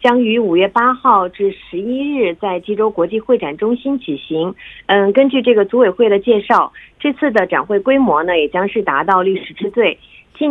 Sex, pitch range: female, 185-250 Hz